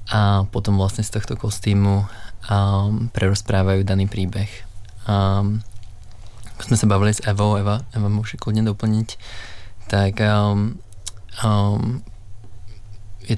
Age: 20-39